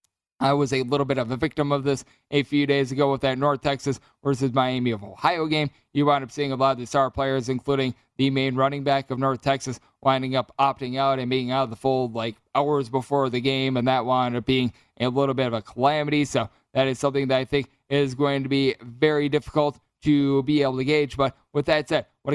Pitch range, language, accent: 135-150 Hz, English, American